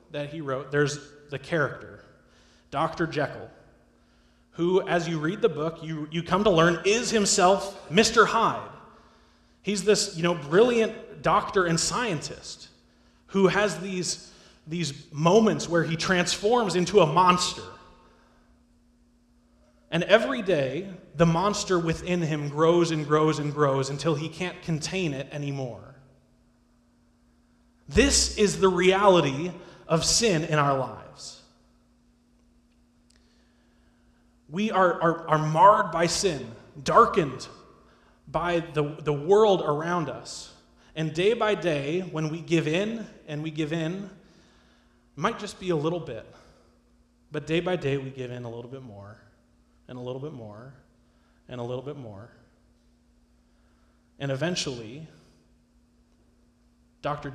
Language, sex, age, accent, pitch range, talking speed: English, male, 30-49, American, 120-180 Hz, 130 wpm